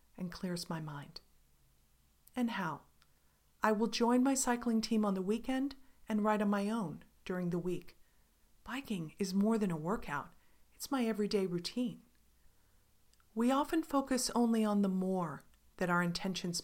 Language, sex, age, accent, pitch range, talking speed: English, female, 40-59, American, 175-235 Hz, 155 wpm